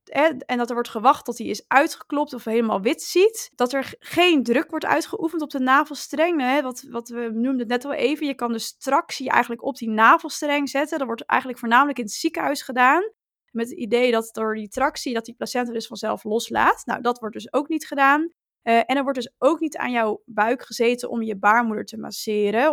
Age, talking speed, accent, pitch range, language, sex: 20-39, 220 wpm, Dutch, 230-280 Hz, Dutch, female